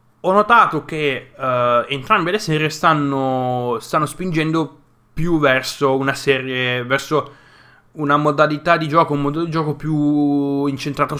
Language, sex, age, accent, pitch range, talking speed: Italian, male, 20-39, native, 125-155 Hz, 135 wpm